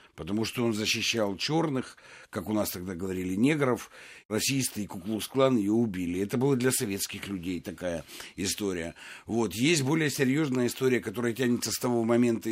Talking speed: 155 wpm